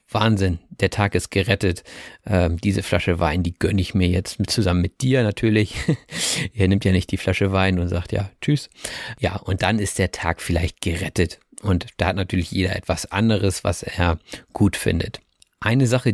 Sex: male